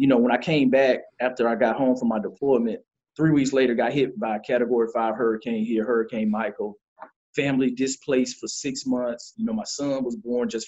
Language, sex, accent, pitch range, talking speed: English, male, American, 120-185 Hz, 215 wpm